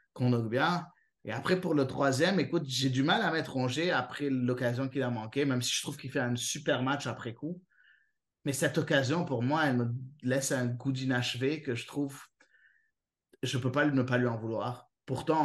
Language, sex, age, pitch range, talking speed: French, male, 30-49, 125-155 Hz, 210 wpm